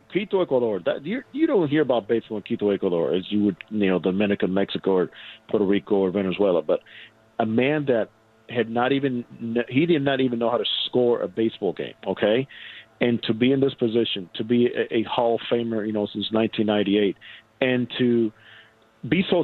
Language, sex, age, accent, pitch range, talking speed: English, male, 50-69, American, 105-125 Hz, 195 wpm